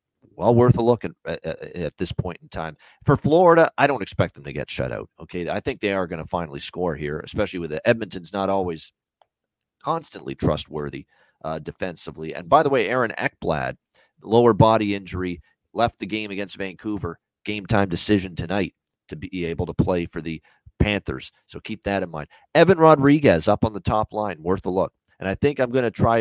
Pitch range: 85-110 Hz